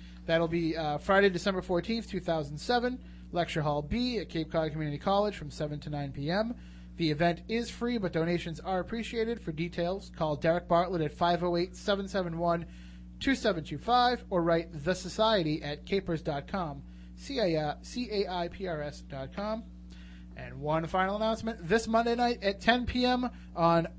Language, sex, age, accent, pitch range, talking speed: English, male, 30-49, American, 145-190 Hz, 135 wpm